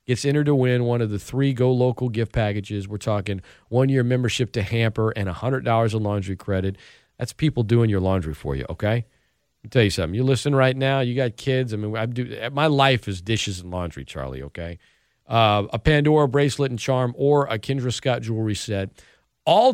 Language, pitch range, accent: English, 95-125 Hz, American